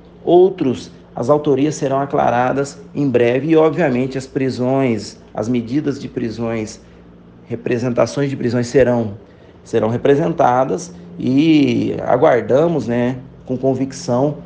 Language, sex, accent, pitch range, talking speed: Portuguese, male, Brazilian, 115-145 Hz, 110 wpm